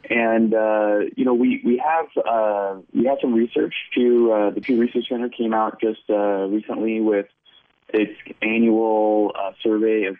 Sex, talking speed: male, 170 wpm